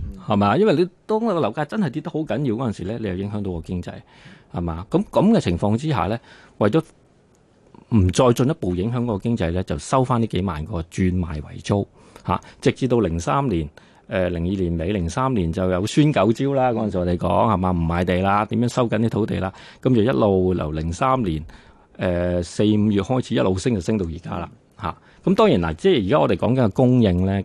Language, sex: Chinese, male